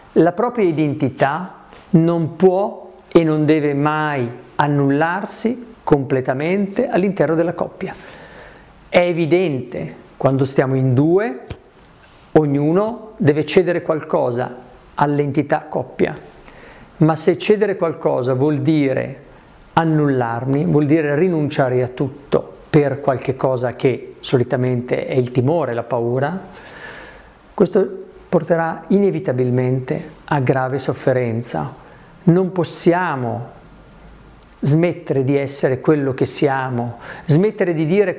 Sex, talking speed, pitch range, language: male, 100 wpm, 135-175 Hz, Italian